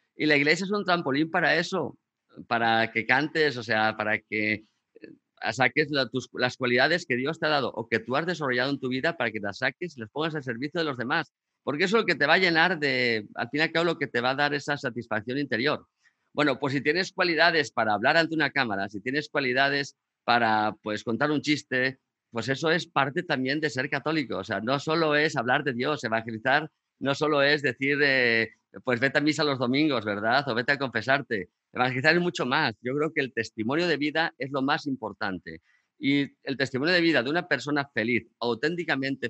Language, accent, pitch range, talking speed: Spanish, Spanish, 115-150 Hz, 220 wpm